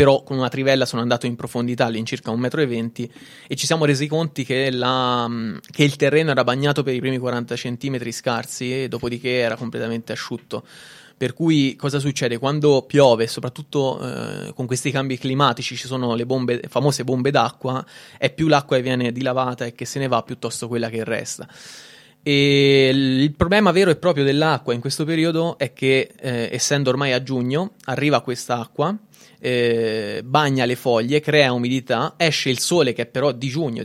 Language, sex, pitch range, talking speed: Italian, male, 120-145 Hz, 185 wpm